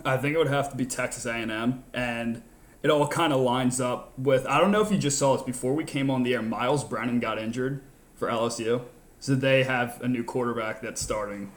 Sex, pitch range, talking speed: male, 120-135 Hz, 235 wpm